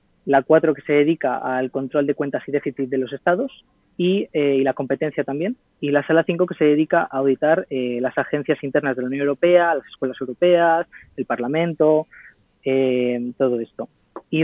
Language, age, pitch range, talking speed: Spanish, 20-39, 130-155 Hz, 190 wpm